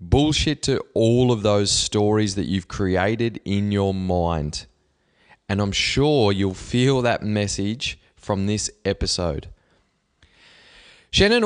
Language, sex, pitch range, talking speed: English, male, 100-125 Hz, 120 wpm